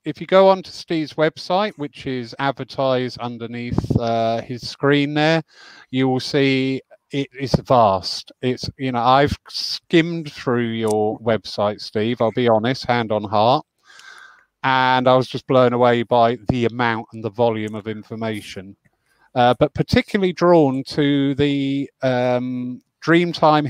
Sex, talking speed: male, 145 wpm